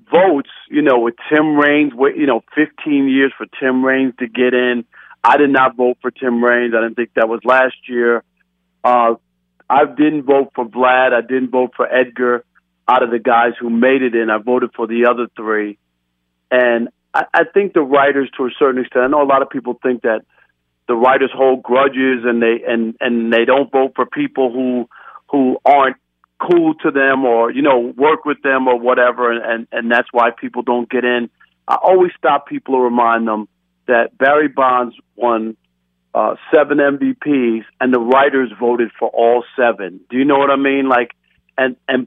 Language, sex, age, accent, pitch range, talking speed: English, male, 50-69, American, 120-135 Hz, 200 wpm